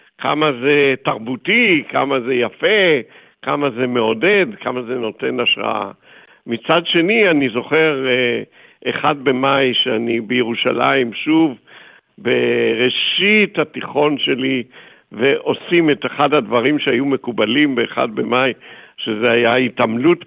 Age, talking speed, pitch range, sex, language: 60-79, 105 wpm, 120-155 Hz, male, Hebrew